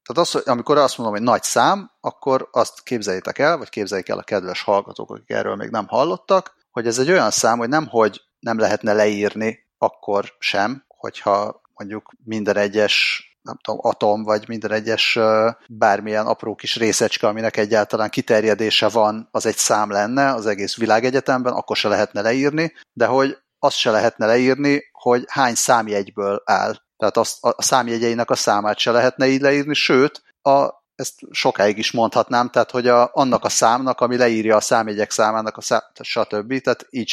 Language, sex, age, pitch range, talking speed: Hungarian, male, 30-49, 105-130 Hz, 170 wpm